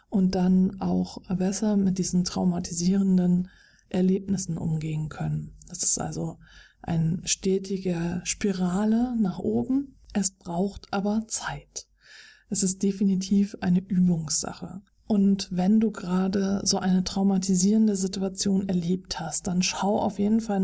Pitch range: 185-210 Hz